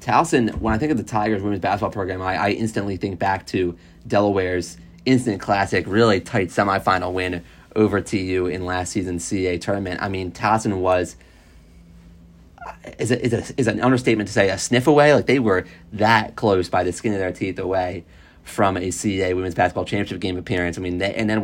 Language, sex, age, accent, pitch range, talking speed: English, male, 30-49, American, 90-110 Hz, 190 wpm